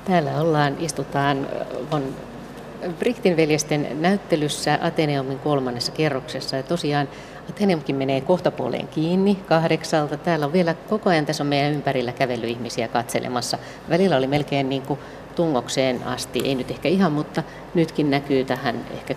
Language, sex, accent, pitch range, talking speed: Finnish, female, native, 135-155 Hz, 130 wpm